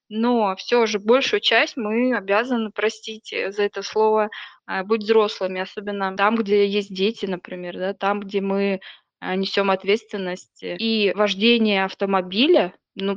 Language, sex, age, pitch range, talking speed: Russian, female, 20-39, 200-235 Hz, 130 wpm